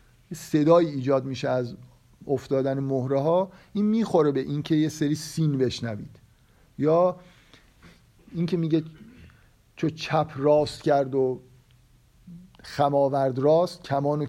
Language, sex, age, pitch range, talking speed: Persian, male, 50-69, 135-165 Hz, 110 wpm